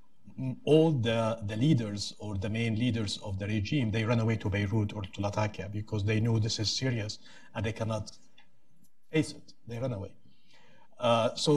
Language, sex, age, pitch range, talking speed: English, male, 50-69, 105-120 Hz, 180 wpm